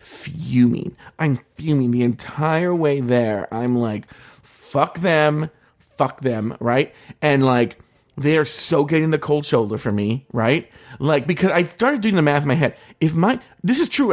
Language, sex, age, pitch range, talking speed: English, male, 40-59, 135-205 Hz, 170 wpm